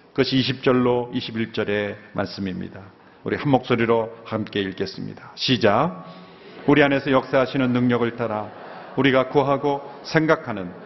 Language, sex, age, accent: Korean, male, 40-59, native